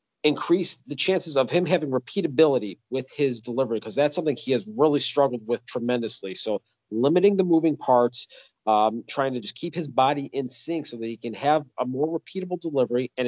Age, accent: 40-59, American